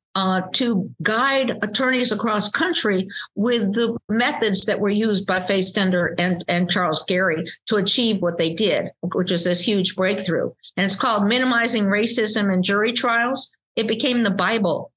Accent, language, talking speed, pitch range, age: American, English, 165 wpm, 185-220 Hz, 50-69